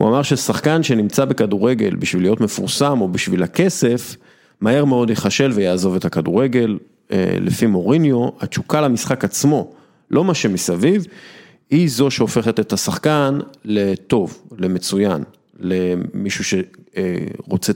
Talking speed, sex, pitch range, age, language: 115 wpm, male, 95-135 Hz, 40-59, Hebrew